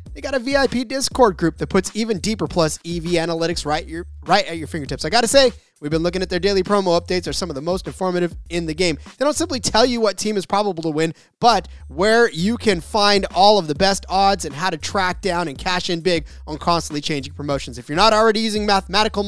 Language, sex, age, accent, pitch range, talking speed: English, male, 30-49, American, 160-215 Hz, 250 wpm